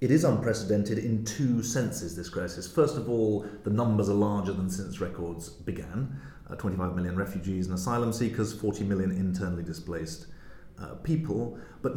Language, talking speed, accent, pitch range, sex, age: English, 165 wpm, British, 95-115 Hz, male, 40-59